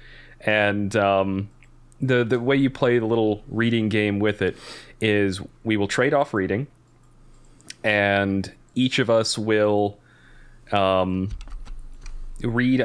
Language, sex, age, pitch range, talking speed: English, male, 30-49, 100-120 Hz, 120 wpm